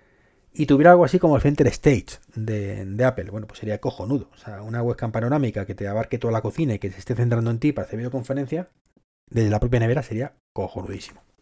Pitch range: 105-140 Hz